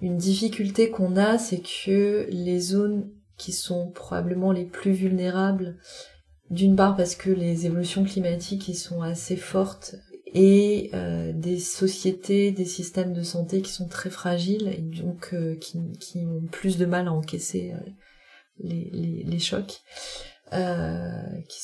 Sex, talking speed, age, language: female, 145 wpm, 30-49, French